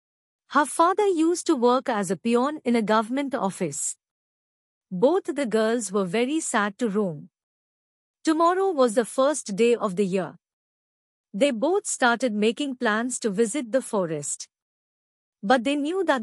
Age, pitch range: 50-69, 210-275 Hz